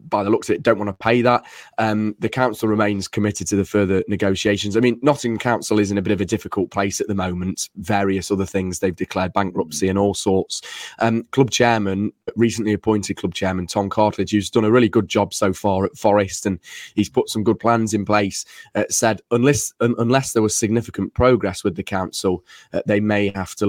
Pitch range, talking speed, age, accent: 100-115 Hz, 220 wpm, 10-29, British